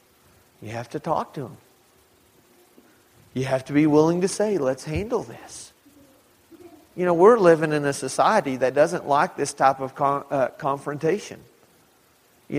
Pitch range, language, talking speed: 135-185 Hz, English, 155 wpm